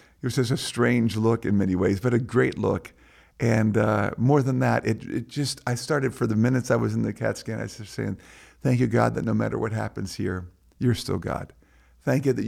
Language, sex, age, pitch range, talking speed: English, male, 50-69, 105-130 Hz, 235 wpm